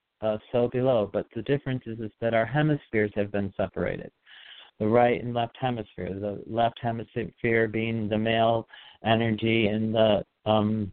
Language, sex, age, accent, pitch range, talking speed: English, male, 50-69, American, 105-130 Hz, 160 wpm